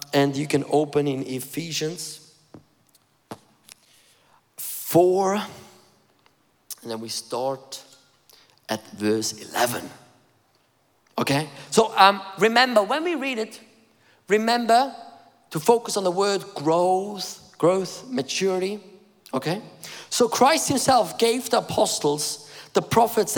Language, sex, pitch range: English, male, 145-210 Hz